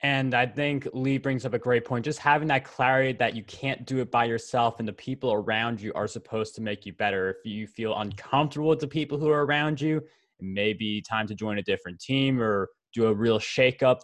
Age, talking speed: 20-39, 240 wpm